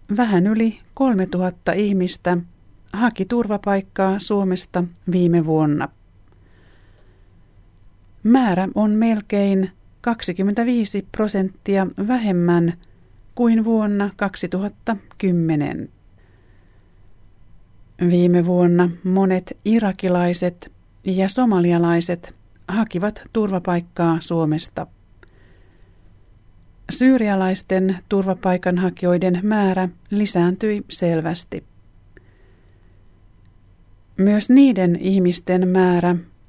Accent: native